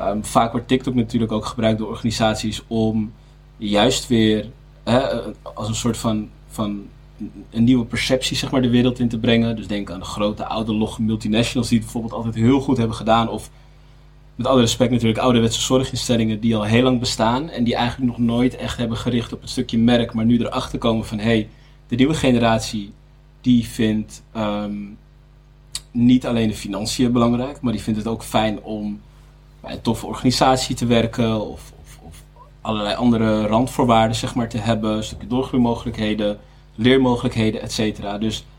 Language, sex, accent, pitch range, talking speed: Dutch, male, Dutch, 110-125 Hz, 175 wpm